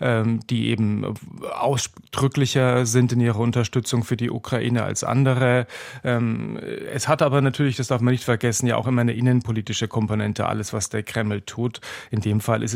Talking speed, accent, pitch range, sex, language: 170 wpm, German, 110-125 Hz, male, German